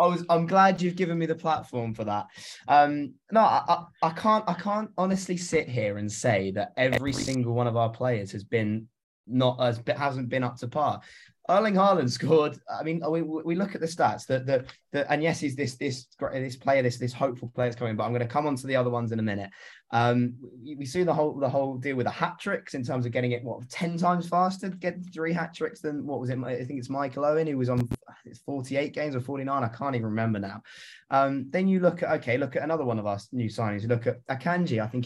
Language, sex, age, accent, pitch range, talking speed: English, male, 20-39, British, 120-155 Hz, 250 wpm